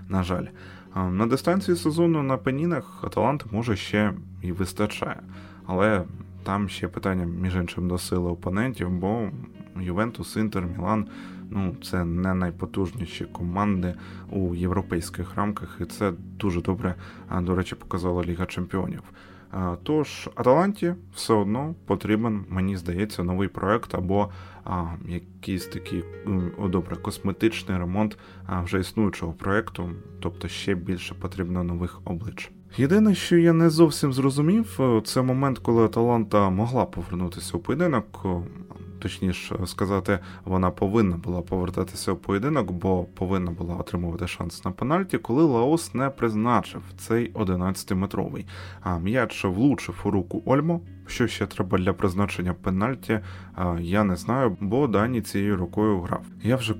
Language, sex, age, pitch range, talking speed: Ukrainian, male, 20-39, 90-110 Hz, 135 wpm